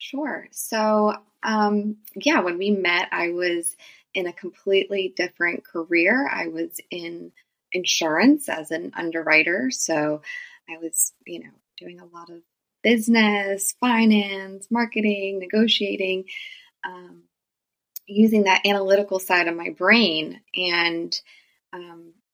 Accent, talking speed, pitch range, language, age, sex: American, 120 wpm, 170-220 Hz, English, 20-39, female